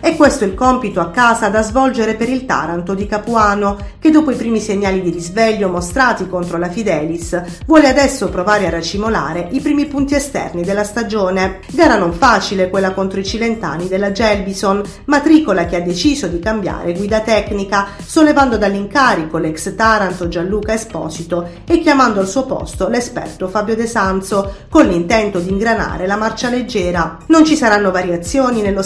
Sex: female